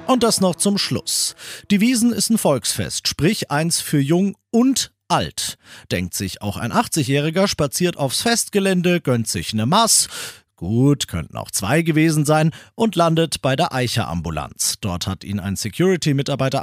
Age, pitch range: 40-59, 115-180 Hz